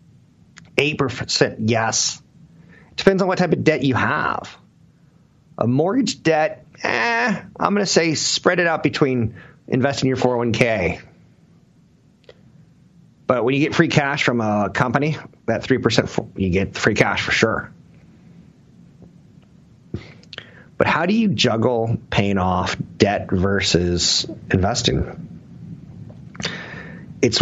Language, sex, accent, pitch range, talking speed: English, male, American, 105-150 Hz, 115 wpm